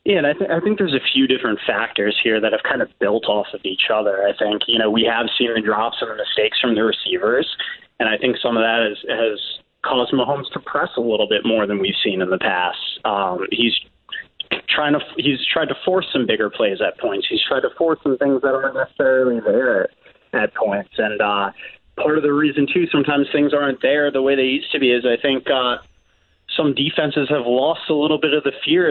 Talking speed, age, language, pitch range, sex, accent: 225 wpm, 30-49, English, 125-165 Hz, male, American